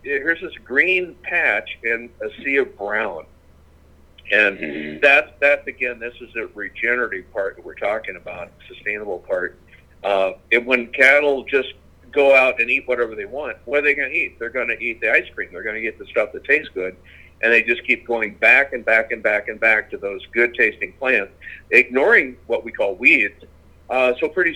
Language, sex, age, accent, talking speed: English, male, 60-79, American, 205 wpm